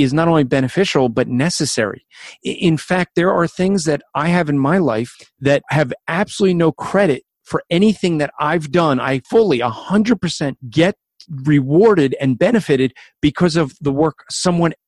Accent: American